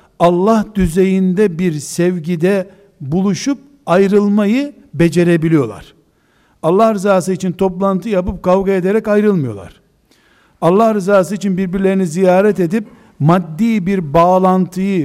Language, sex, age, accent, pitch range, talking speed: Turkish, male, 60-79, native, 170-205 Hz, 95 wpm